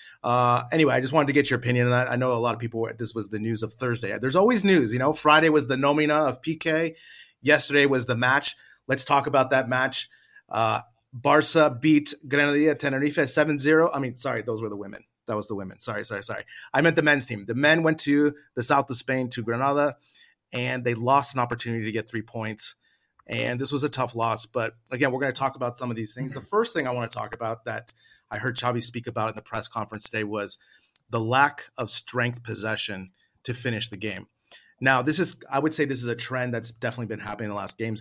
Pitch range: 115-140 Hz